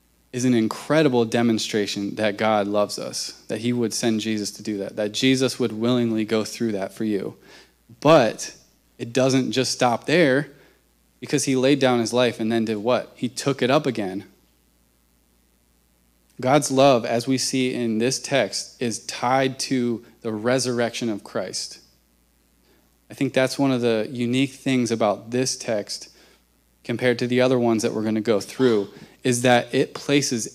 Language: English